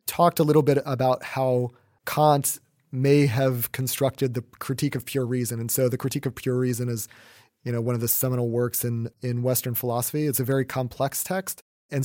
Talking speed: 200 wpm